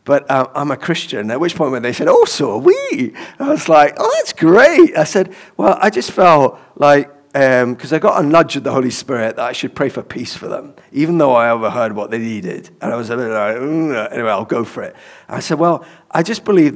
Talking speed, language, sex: 260 wpm, English, male